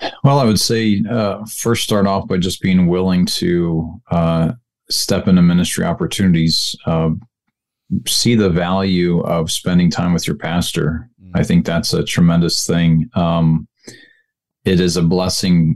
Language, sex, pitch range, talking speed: English, male, 80-95 Hz, 150 wpm